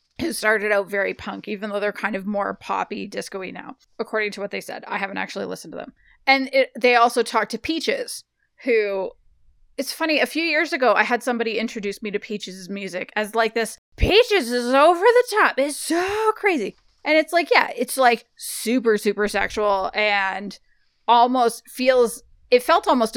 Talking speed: 185 wpm